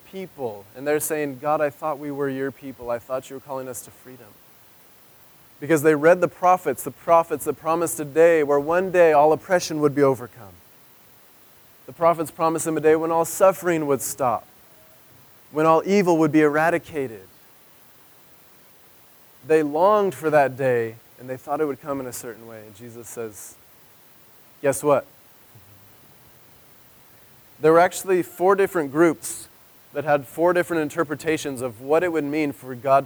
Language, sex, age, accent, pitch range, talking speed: English, male, 20-39, American, 130-160 Hz, 165 wpm